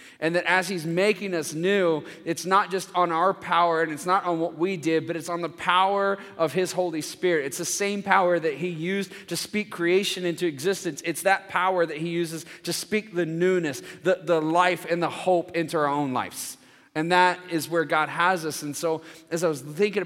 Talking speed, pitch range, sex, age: 220 wpm, 150-180 Hz, male, 30-49